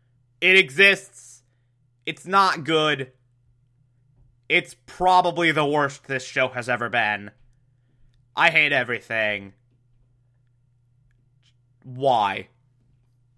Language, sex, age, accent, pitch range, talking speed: English, male, 20-39, American, 125-175 Hz, 80 wpm